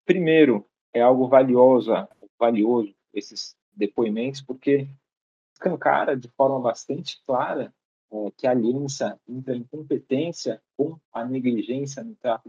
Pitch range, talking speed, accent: 115-140 Hz, 120 wpm, Brazilian